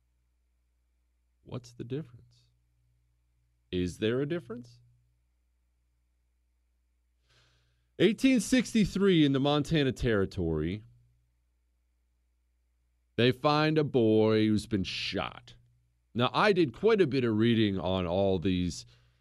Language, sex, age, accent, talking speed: English, male, 40-59, American, 95 wpm